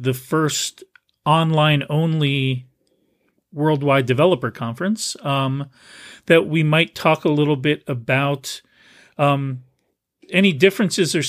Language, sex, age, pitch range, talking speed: English, male, 40-59, 135-175 Hz, 105 wpm